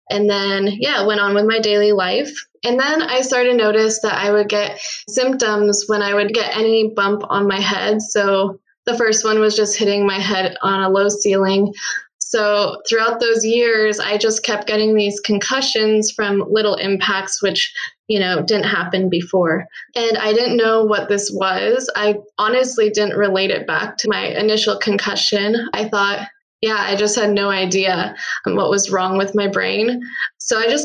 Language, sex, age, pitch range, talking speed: English, female, 20-39, 200-220 Hz, 185 wpm